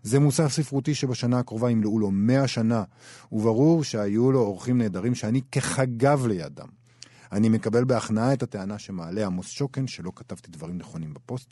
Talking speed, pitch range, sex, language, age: 155 wpm, 105-135 Hz, male, Hebrew, 50-69